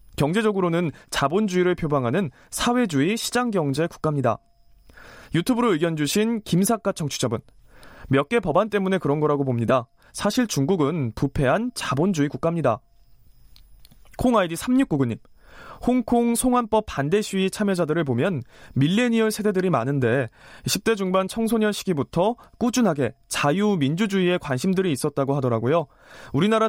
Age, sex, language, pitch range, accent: 20-39, male, Korean, 140-215 Hz, native